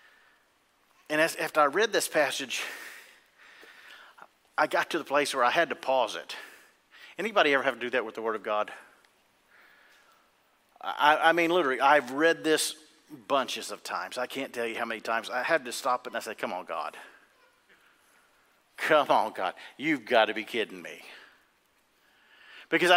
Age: 50-69